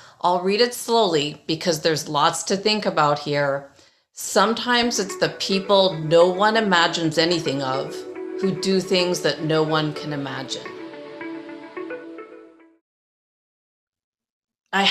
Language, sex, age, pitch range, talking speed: English, female, 40-59, 155-195 Hz, 115 wpm